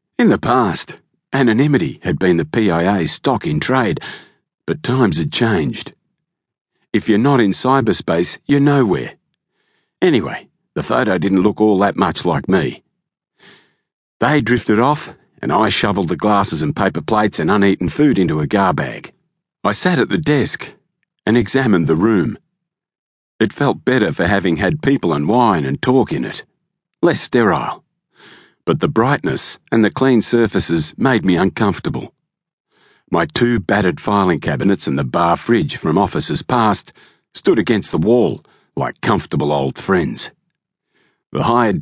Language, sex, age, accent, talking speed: English, male, 50-69, Australian, 150 wpm